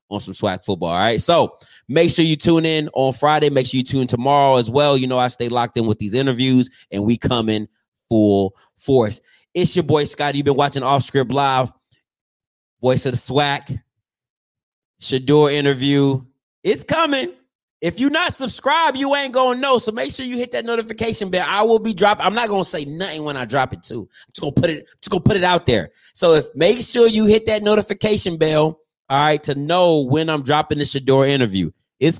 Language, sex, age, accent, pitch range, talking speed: English, male, 30-49, American, 115-160 Hz, 210 wpm